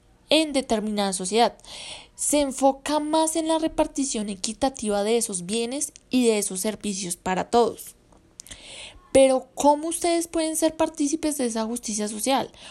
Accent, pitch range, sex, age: Colombian, 205-250 Hz, female, 20-39